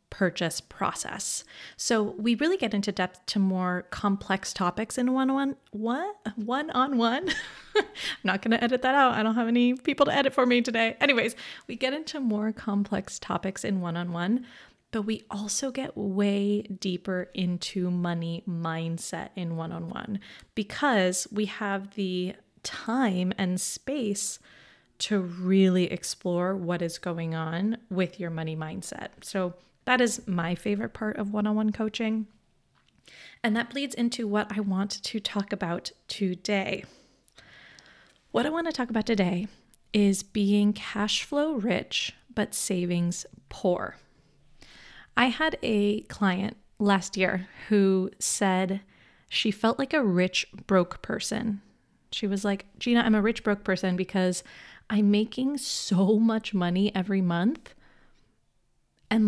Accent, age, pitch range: American, 30-49, 185-230 Hz